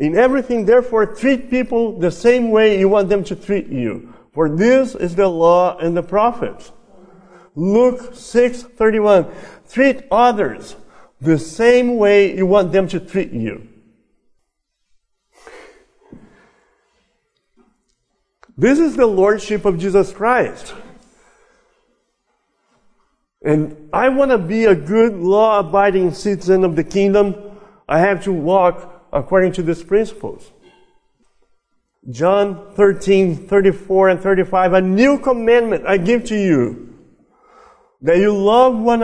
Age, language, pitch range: 50-69, English, 180-235 Hz